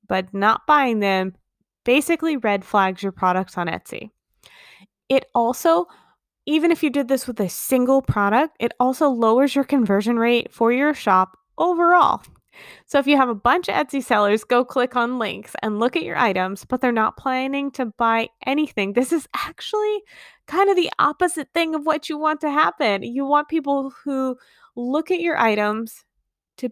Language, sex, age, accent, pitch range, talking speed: English, female, 20-39, American, 215-295 Hz, 180 wpm